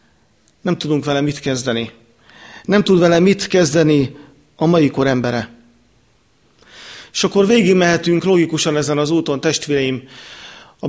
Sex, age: male, 40-59